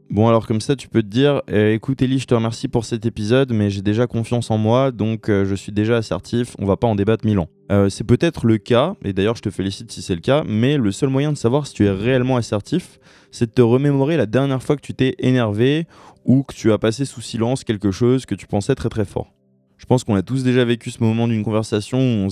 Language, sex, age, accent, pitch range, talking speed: French, male, 20-39, French, 105-130 Hz, 270 wpm